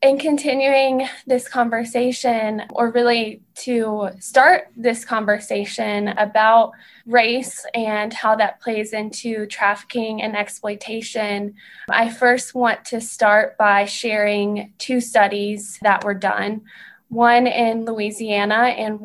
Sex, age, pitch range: female, 20-39, 205-230 Hz